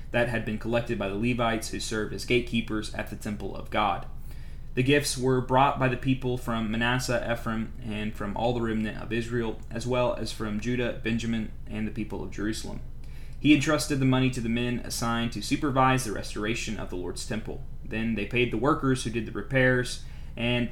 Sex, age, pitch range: male, 30-49, 105-125 Hz